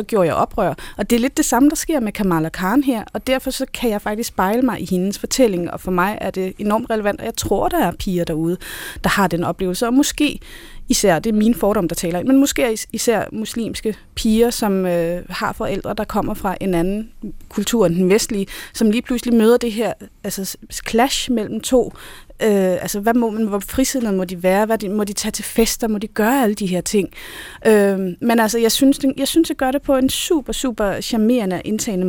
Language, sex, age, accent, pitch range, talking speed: Danish, female, 30-49, native, 185-230 Hz, 235 wpm